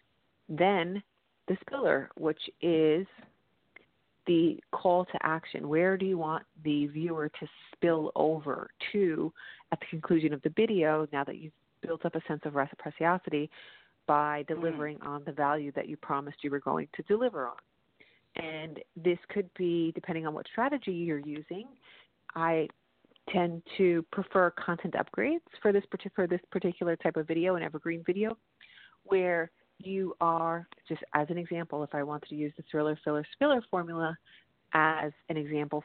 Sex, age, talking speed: female, 30-49, 155 wpm